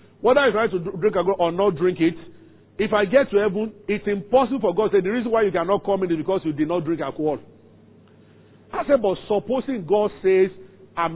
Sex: male